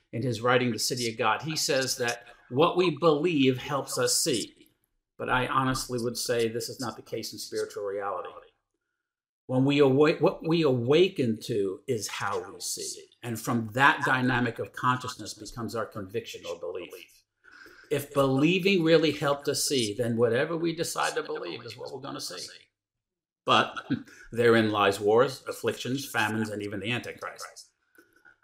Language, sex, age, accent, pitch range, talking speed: English, male, 50-69, American, 120-165 Hz, 165 wpm